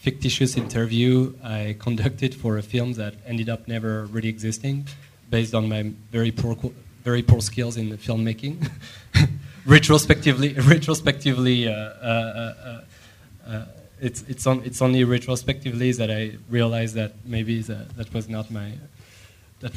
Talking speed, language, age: 145 wpm, English, 20-39